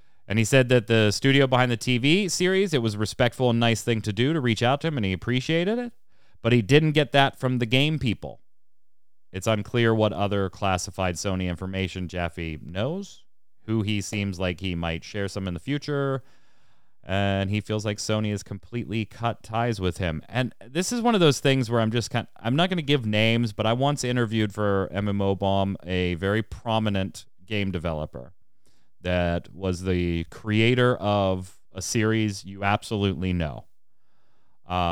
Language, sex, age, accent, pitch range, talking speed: English, male, 30-49, American, 95-125 Hz, 185 wpm